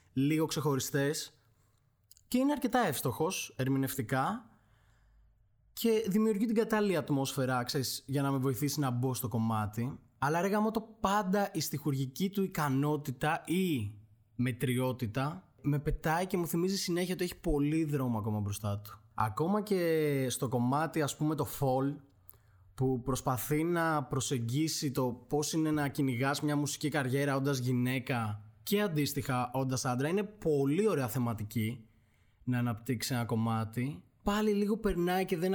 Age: 20-39